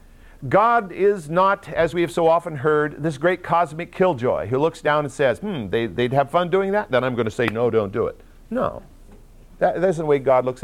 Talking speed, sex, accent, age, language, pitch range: 235 wpm, male, American, 50-69, English, 110-180 Hz